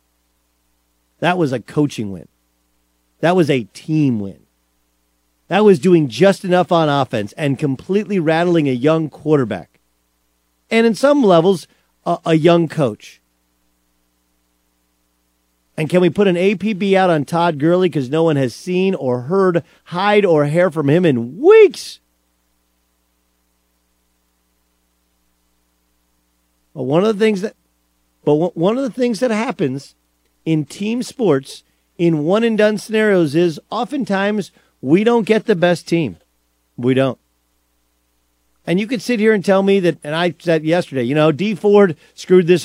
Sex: male